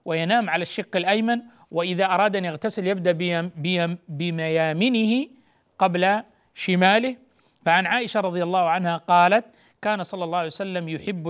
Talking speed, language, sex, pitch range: 125 wpm, Arabic, male, 170-230 Hz